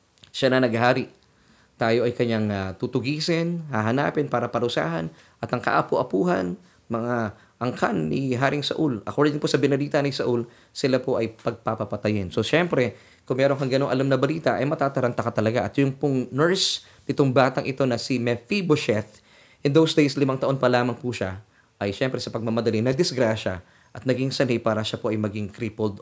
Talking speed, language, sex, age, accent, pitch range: 170 wpm, Filipino, male, 20-39, native, 110-140 Hz